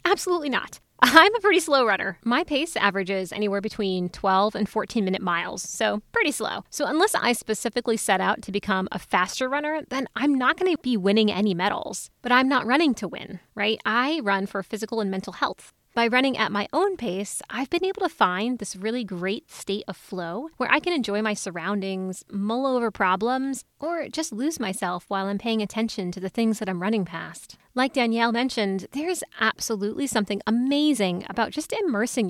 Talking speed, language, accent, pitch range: 195 wpm, English, American, 195-255 Hz